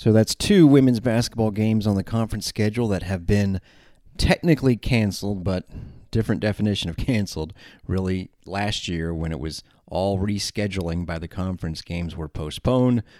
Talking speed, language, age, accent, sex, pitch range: 155 wpm, English, 30-49, American, male, 85-105 Hz